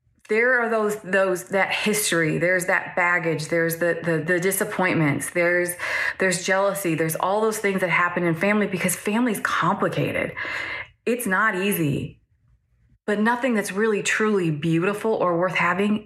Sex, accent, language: female, American, English